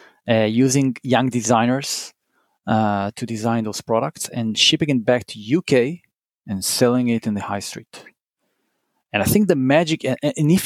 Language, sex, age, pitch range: English, male, 40-59, 120-150 Hz